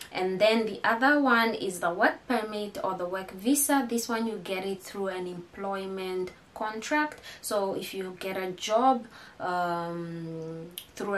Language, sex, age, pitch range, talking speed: English, female, 20-39, 180-225 Hz, 160 wpm